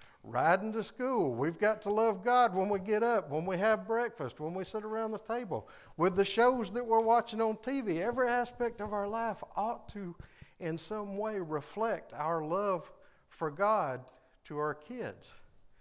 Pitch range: 140-215 Hz